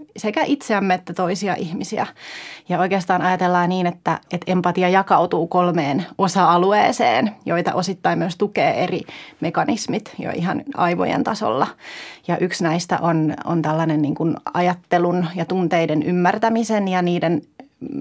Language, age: Finnish, 30-49